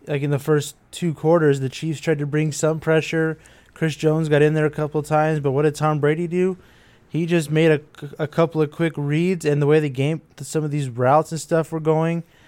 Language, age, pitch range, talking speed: English, 20-39, 135-155 Hz, 240 wpm